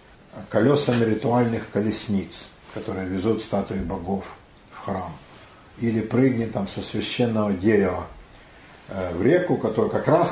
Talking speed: 115 wpm